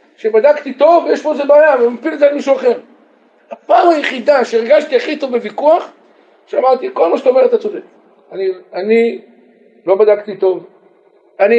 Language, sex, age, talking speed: Hebrew, male, 50-69, 150 wpm